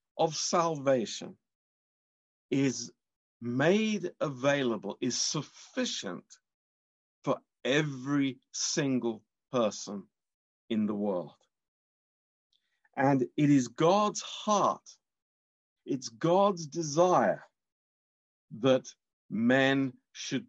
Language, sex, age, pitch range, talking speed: Romanian, male, 50-69, 120-165 Hz, 75 wpm